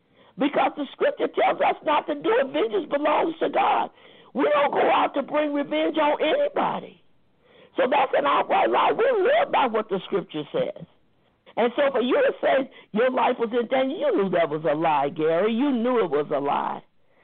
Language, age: English, 50-69